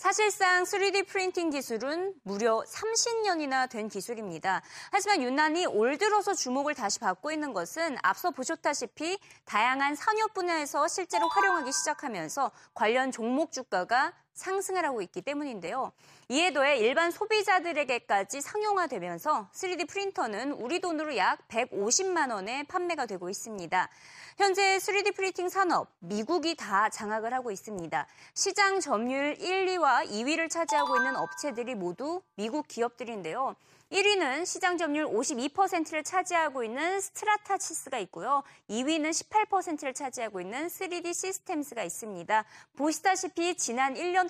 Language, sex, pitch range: Korean, female, 240-370 Hz